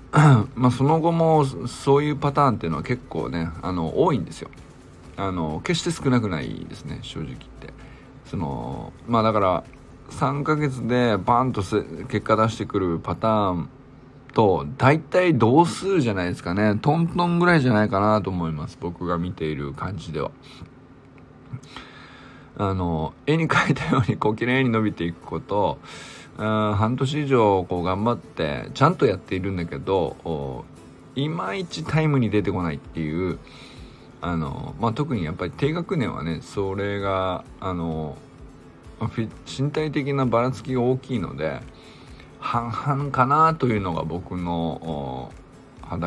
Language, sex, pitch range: Japanese, male, 90-135 Hz